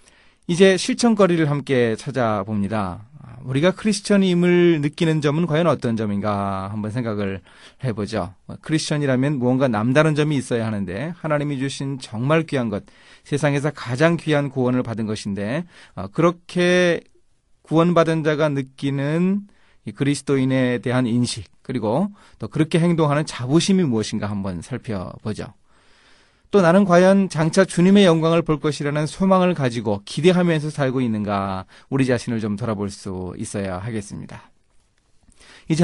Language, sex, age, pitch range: Korean, male, 30-49, 110-155 Hz